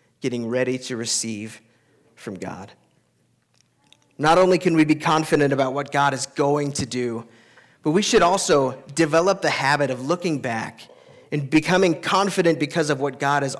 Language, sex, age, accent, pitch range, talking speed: English, male, 30-49, American, 130-175 Hz, 165 wpm